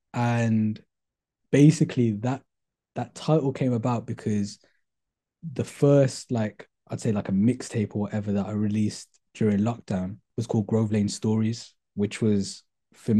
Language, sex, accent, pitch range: English, male, British, 105-140 Hz